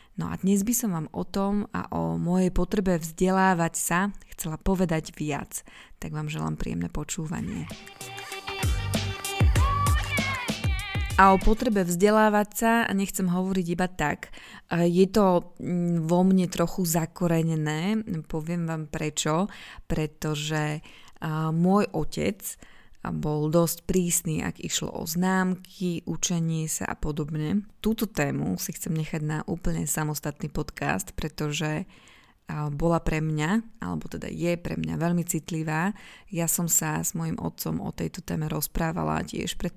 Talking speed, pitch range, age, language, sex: 130 wpm, 155-185 Hz, 20-39, Slovak, female